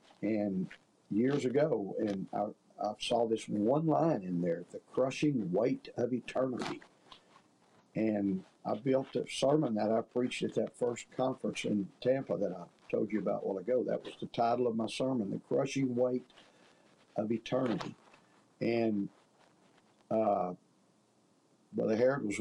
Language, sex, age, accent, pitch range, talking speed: English, male, 50-69, American, 100-120 Hz, 150 wpm